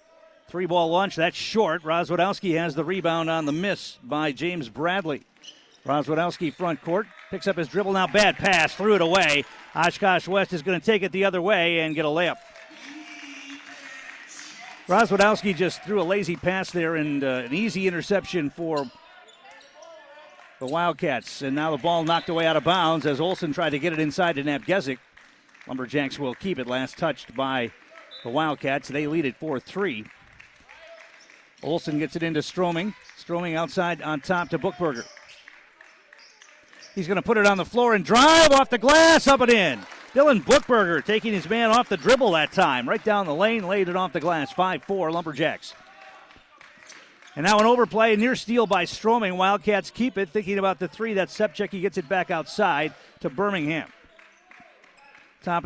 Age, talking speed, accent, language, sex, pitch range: 50-69, 170 wpm, American, English, male, 160-210 Hz